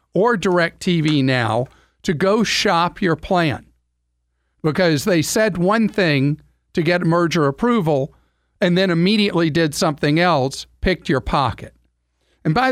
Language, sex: English, male